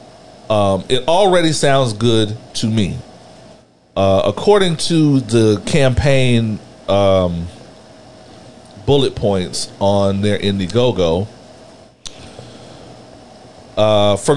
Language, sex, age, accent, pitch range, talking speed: English, male, 40-59, American, 110-140 Hz, 85 wpm